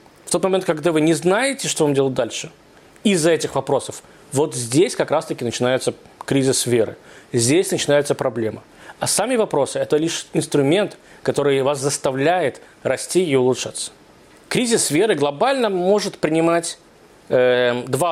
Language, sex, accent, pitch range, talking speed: Russian, male, native, 135-180 Hz, 140 wpm